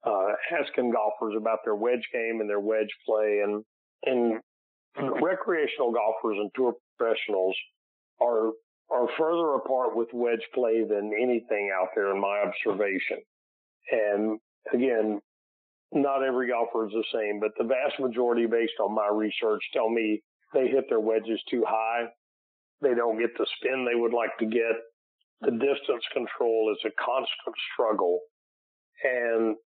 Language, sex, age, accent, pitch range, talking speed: English, male, 50-69, American, 105-135 Hz, 150 wpm